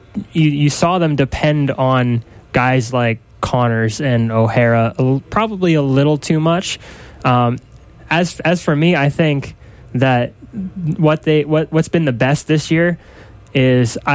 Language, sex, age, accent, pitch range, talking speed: English, male, 10-29, American, 120-150 Hz, 145 wpm